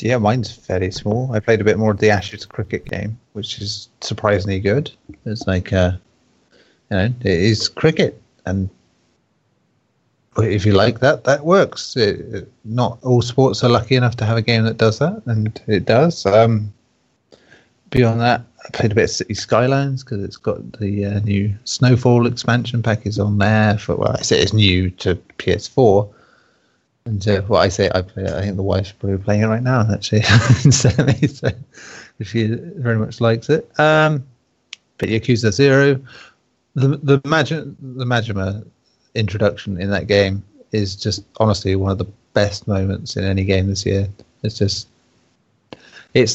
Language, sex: English, male